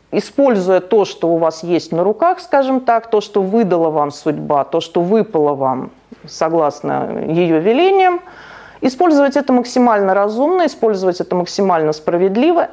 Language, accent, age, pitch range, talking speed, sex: Russian, native, 40-59, 185-275 Hz, 140 wpm, female